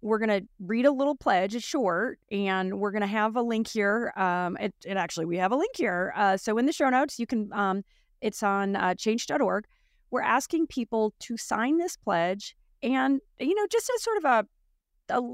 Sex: female